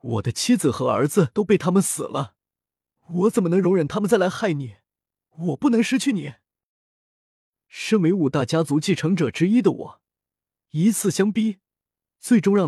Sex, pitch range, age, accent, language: male, 120-175 Hz, 20-39, native, Chinese